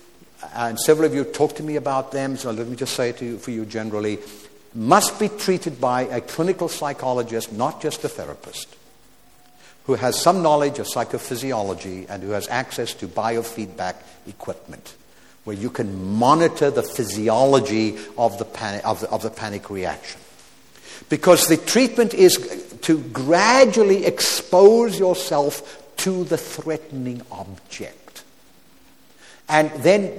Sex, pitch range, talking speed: male, 115-165 Hz, 145 wpm